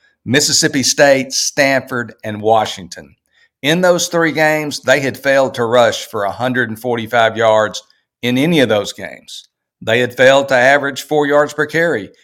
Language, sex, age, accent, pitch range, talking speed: English, male, 50-69, American, 110-140 Hz, 150 wpm